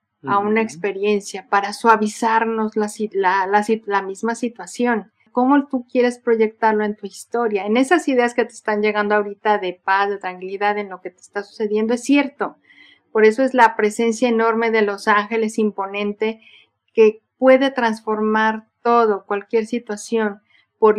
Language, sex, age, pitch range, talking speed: Spanish, female, 40-59, 200-235 Hz, 150 wpm